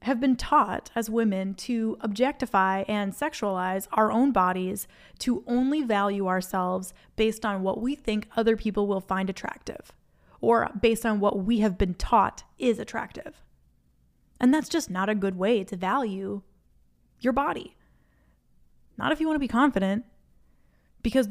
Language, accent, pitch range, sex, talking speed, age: English, American, 195-235 Hz, female, 155 wpm, 20-39